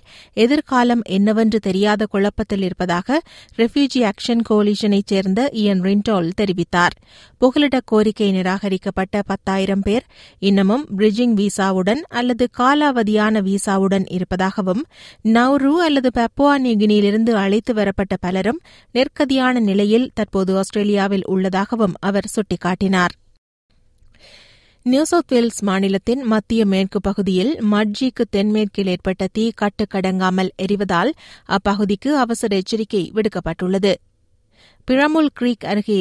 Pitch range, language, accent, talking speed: 195-235 Hz, Tamil, native, 95 wpm